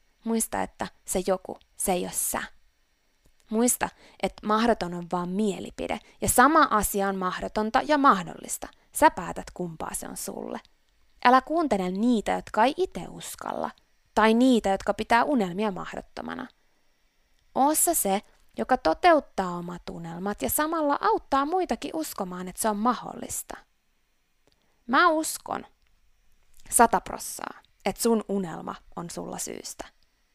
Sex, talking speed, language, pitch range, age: female, 125 wpm, Finnish, 185-245 Hz, 20-39